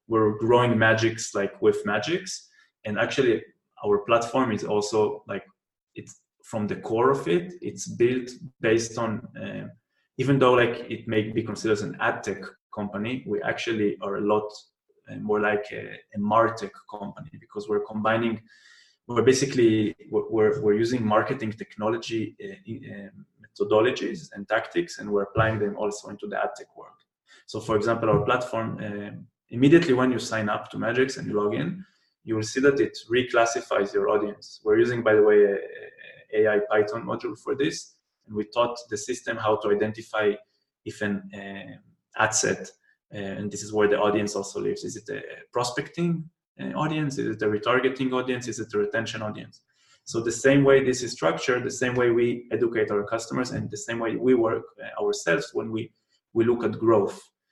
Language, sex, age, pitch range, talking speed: English, male, 20-39, 105-130 Hz, 175 wpm